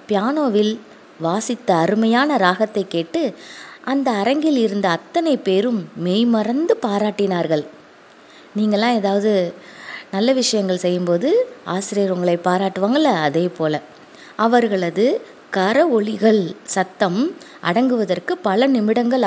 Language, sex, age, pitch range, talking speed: English, female, 20-39, 185-265 Hz, 85 wpm